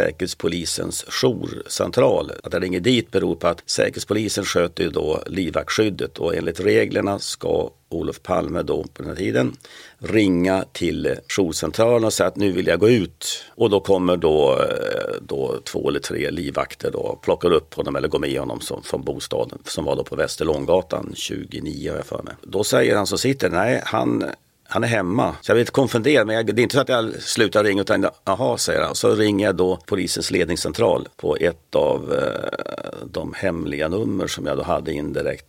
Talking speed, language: 190 wpm, Swedish